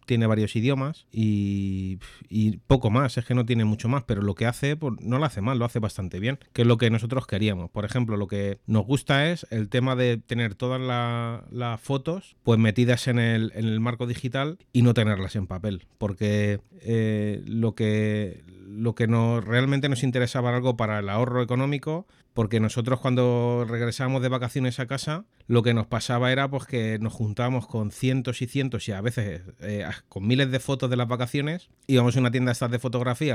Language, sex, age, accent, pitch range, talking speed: Spanish, male, 30-49, Spanish, 105-125 Hz, 205 wpm